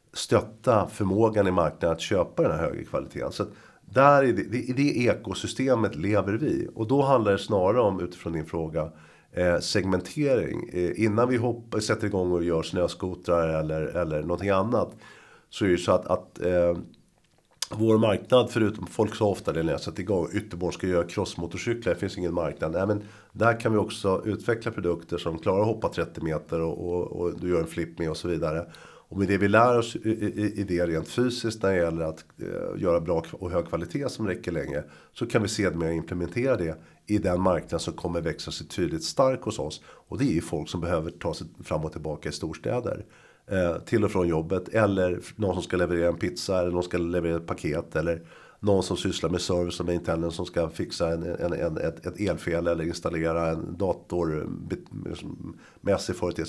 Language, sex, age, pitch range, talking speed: Swedish, male, 50-69, 85-105 Hz, 200 wpm